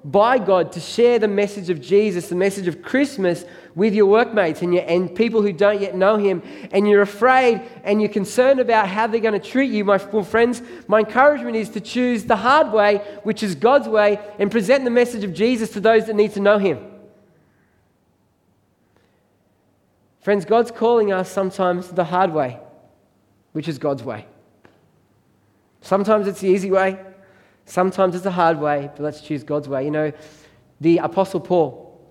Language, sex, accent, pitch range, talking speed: English, male, Australian, 165-225 Hz, 180 wpm